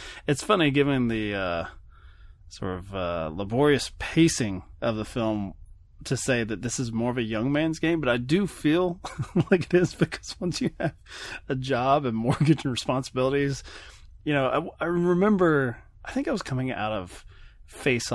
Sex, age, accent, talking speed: male, 20-39, American, 180 wpm